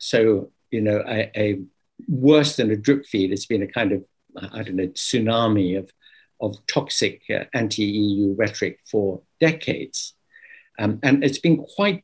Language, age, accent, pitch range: English, 60-79, British, 105-135 Hz